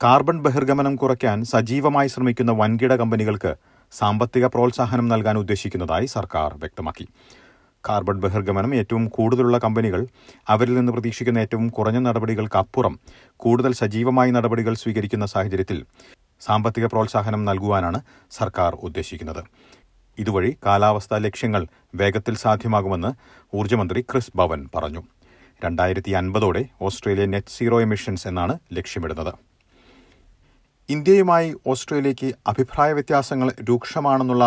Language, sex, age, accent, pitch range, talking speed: Malayalam, male, 40-59, native, 100-125 Hz, 85 wpm